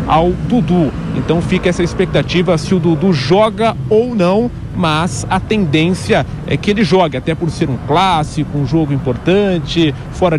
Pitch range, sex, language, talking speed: 150-195 Hz, male, Portuguese, 160 wpm